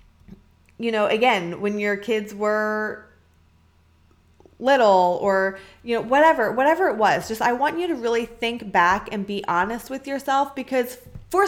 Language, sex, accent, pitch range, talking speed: English, female, American, 170-235 Hz, 155 wpm